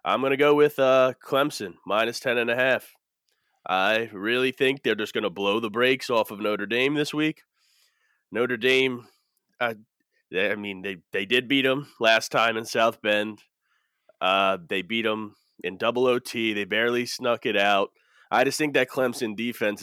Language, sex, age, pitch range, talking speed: English, male, 20-39, 110-130 Hz, 190 wpm